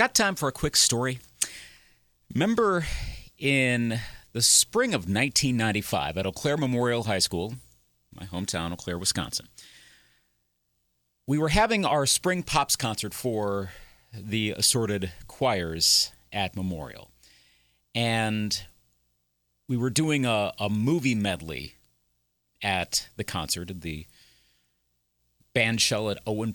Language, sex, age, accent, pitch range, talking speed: English, male, 40-59, American, 85-130 Hz, 120 wpm